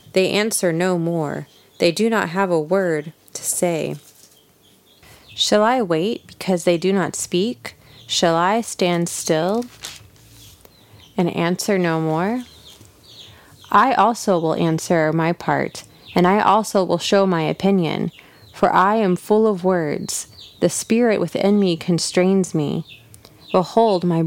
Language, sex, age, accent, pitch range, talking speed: English, female, 30-49, American, 165-195 Hz, 135 wpm